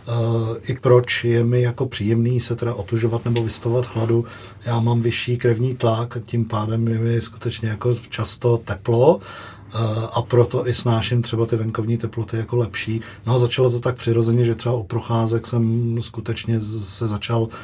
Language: Czech